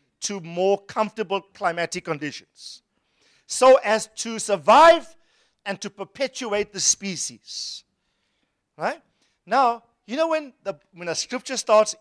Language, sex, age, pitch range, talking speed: English, male, 50-69, 180-255 Hz, 120 wpm